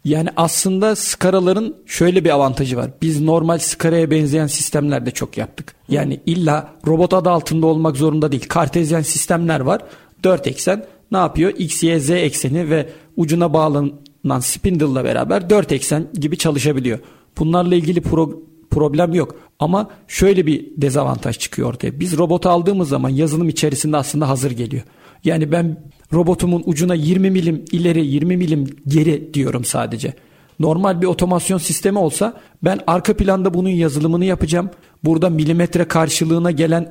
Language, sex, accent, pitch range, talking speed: Turkish, male, native, 150-180 Hz, 145 wpm